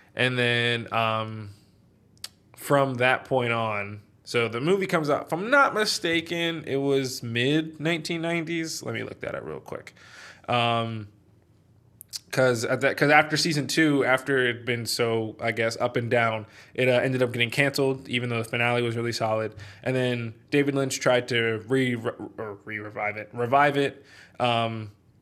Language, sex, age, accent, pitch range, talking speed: English, male, 20-39, American, 110-140 Hz, 165 wpm